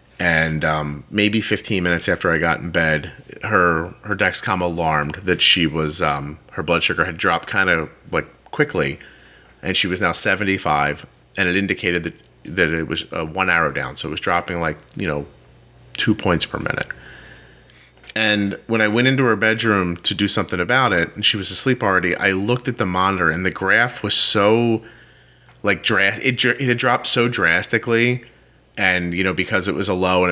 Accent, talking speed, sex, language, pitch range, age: American, 195 wpm, male, English, 80-105 Hz, 30-49